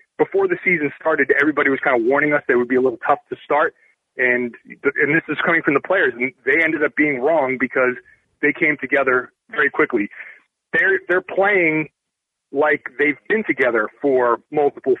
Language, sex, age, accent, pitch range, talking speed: English, male, 30-49, American, 145-230 Hz, 190 wpm